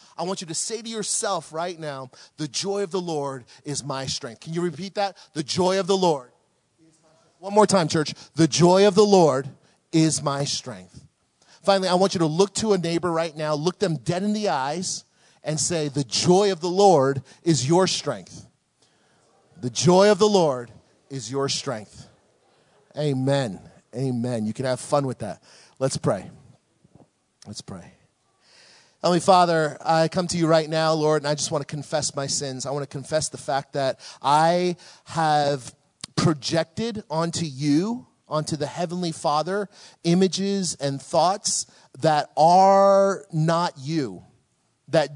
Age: 40-59